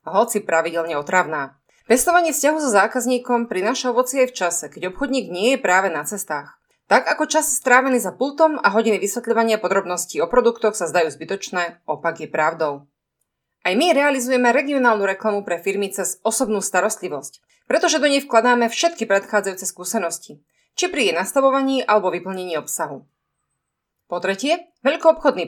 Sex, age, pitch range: female, 30-49, 185-255 Hz